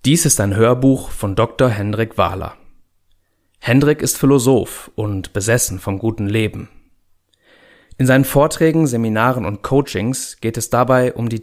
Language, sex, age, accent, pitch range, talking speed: German, male, 30-49, German, 105-130 Hz, 140 wpm